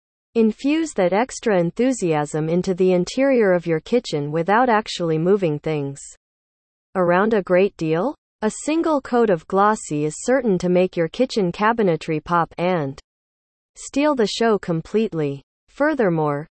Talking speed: 135 wpm